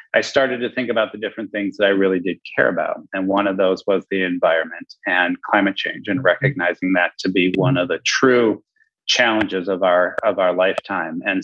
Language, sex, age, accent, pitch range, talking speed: English, male, 30-49, American, 100-130 Hz, 210 wpm